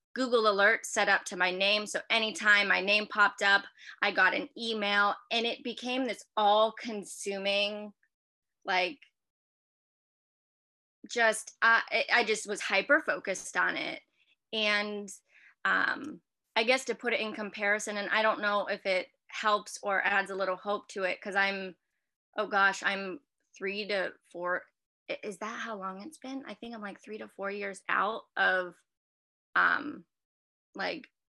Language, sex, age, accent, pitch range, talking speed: English, female, 20-39, American, 190-220 Hz, 155 wpm